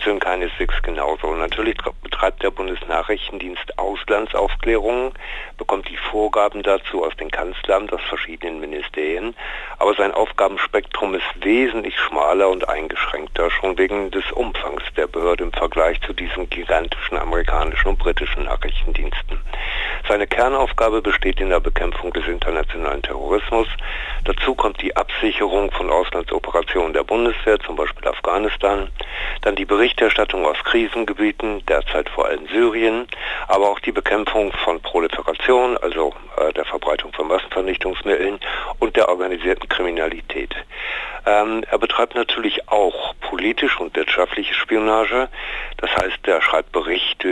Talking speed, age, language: 125 wpm, 50-69, German